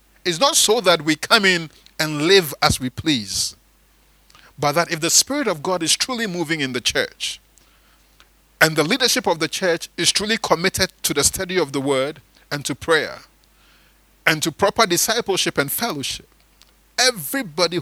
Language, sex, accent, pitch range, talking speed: English, male, Nigerian, 150-220 Hz, 170 wpm